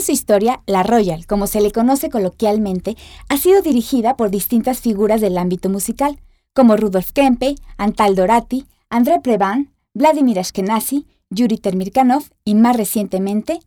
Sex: female